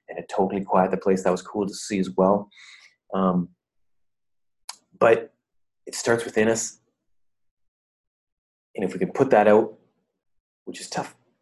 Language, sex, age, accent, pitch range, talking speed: English, male, 20-39, American, 100-130 Hz, 150 wpm